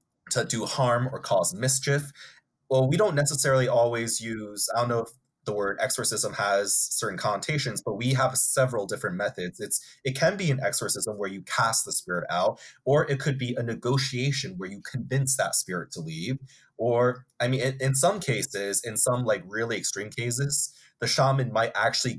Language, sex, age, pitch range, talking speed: English, male, 20-39, 115-135 Hz, 190 wpm